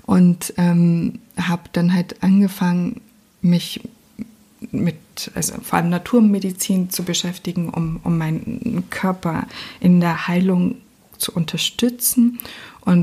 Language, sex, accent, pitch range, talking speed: German, female, German, 165-205 Hz, 110 wpm